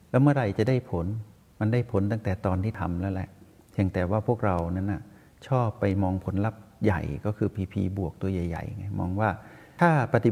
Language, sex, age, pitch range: Thai, male, 60-79, 95-120 Hz